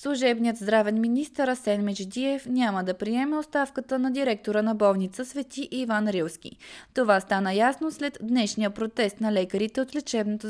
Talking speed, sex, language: 150 wpm, female, Bulgarian